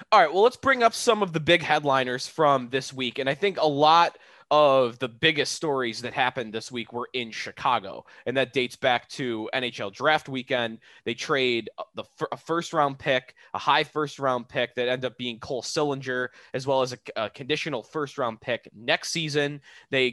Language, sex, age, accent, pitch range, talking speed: English, male, 20-39, American, 125-150 Hz, 205 wpm